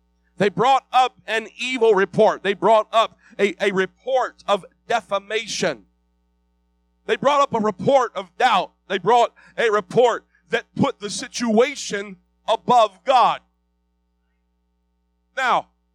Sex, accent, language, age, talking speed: male, American, English, 50-69, 120 wpm